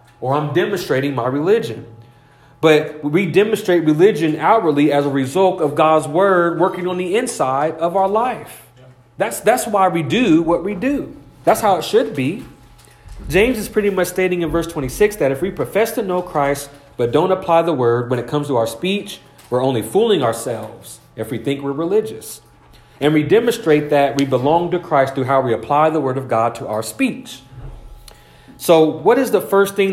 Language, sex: English, male